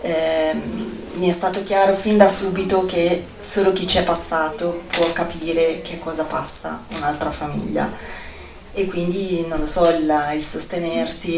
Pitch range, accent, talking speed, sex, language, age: 160-185 Hz, native, 155 wpm, female, Italian, 20-39